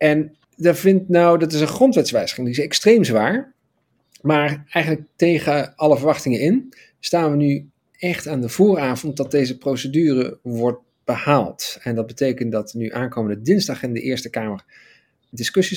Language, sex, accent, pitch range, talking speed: Dutch, male, Dutch, 125-180 Hz, 160 wpm